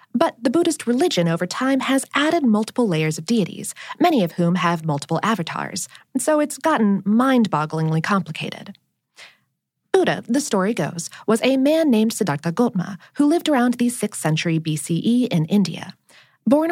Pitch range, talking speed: 170-260 Hz, 155 wpm